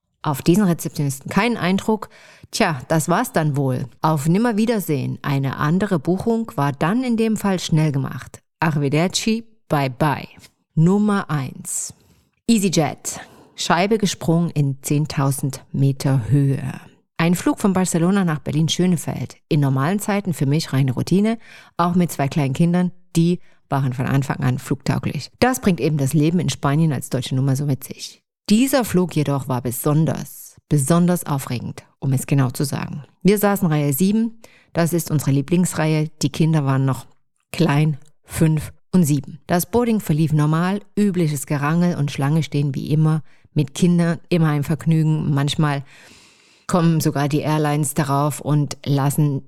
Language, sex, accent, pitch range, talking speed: German, female, German, 140-180 Hz, 150 wpm